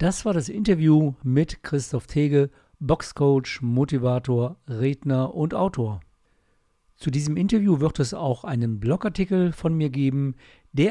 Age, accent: 50-69, German